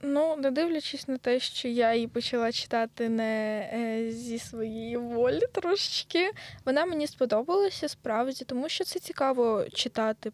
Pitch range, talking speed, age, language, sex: 225-285 Hz, 140 wpm, 10-29, Ukrainian, female